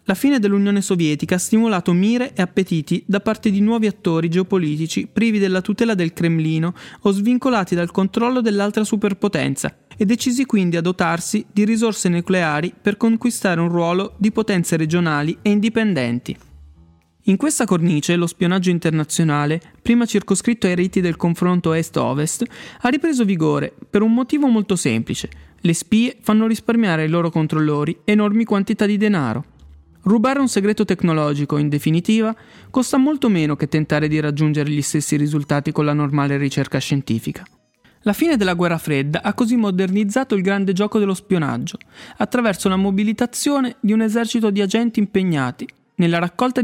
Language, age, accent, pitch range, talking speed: Italian, 20-39, native, 160-220 Hz, 155 wpm